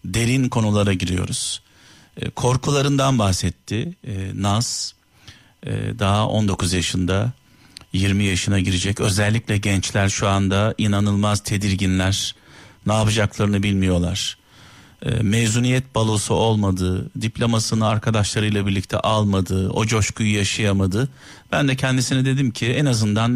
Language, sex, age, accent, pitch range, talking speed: Turkish, male, 50-69, native, 100-125 Hz, 100 wpm